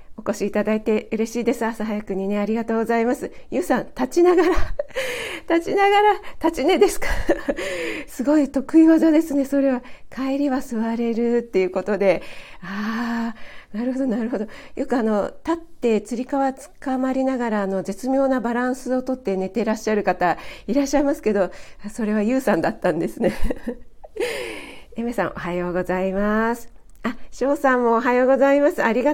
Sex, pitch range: female, 185-255 Hz